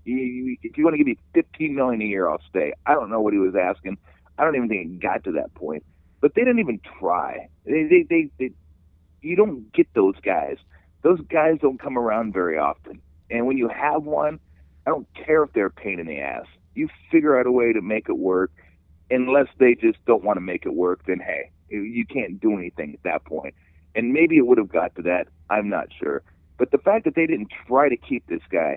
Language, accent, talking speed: English, American, 235 wpm